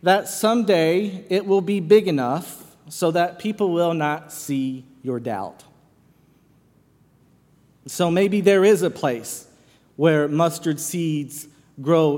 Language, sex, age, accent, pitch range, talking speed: English, male, 40-59, American, 145-185 Hz, 125 wpm